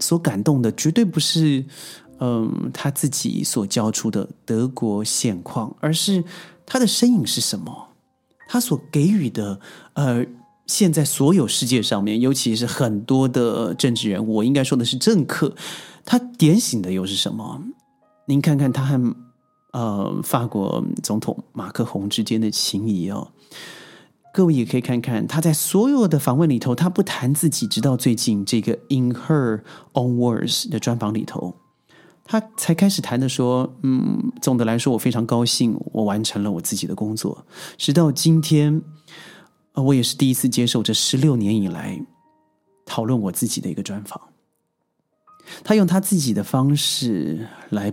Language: Chinese